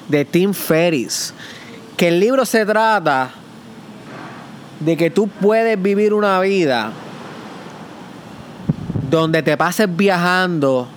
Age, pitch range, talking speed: 20-39, 160-205 Hz, 105 wpm